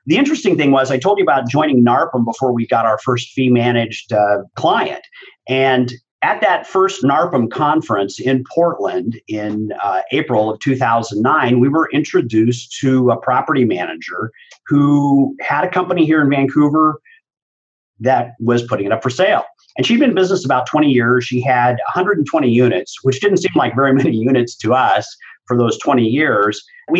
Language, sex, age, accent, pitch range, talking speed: English, male, 50-69, American, 120-155 Hz, 170 wpm